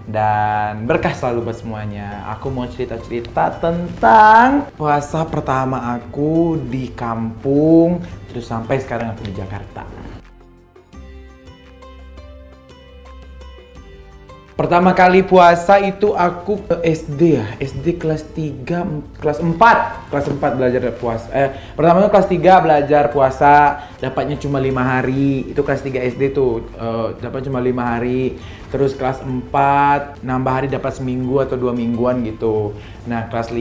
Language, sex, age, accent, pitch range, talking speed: Indonesian, male, 20-39, native, 110-145 Hz, 120 wpm